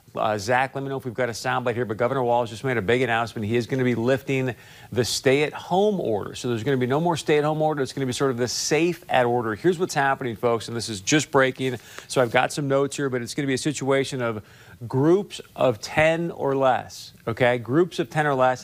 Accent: American